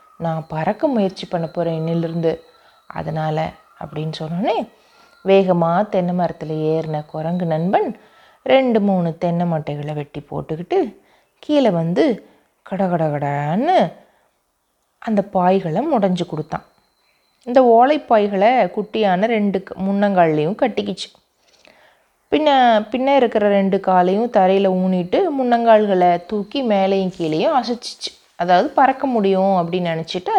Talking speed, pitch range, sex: 105 wpm, 170-240 Hz, female